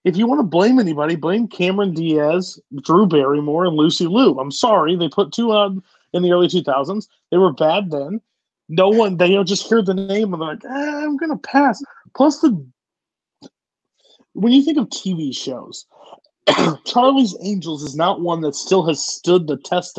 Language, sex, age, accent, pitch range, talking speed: English, male, 30-49, American, 160-230 Hz, 185 wpm